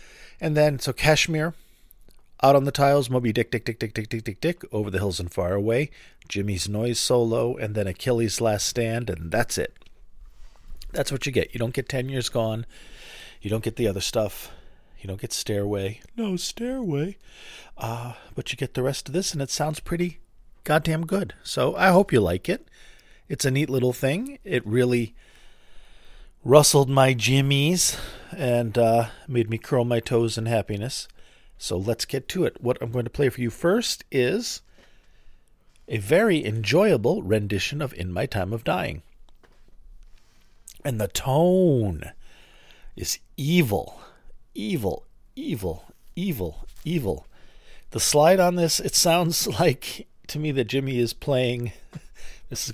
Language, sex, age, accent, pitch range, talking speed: English, male, 40-59, American, 110-145 Hz, 165 wpm